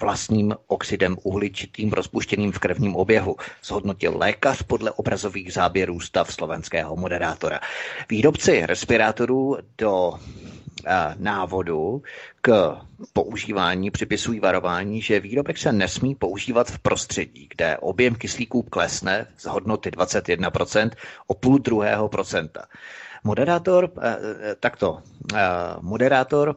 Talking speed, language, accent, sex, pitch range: 95 wpm, Czech, native, male, 100-120 Hz